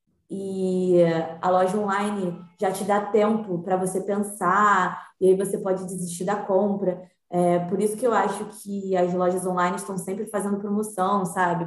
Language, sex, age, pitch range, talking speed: Portuguese, female, 20-39, 180-210 Hz, 165 wpm